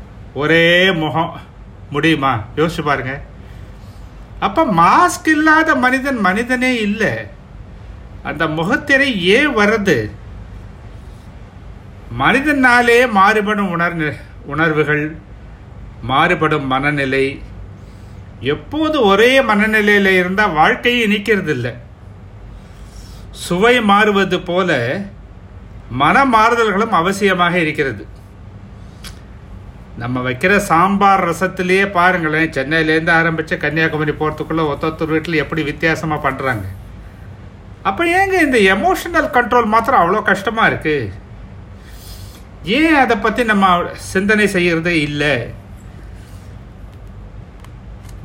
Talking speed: 80 wpm